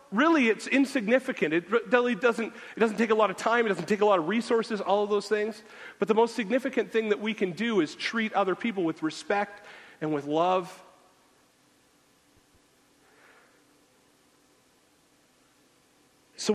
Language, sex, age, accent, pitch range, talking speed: English, male, 40-59, American, 165-215 Hz, 150 wpm